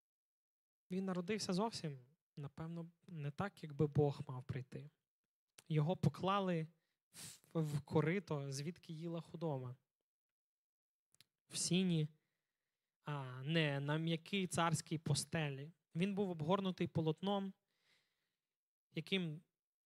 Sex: male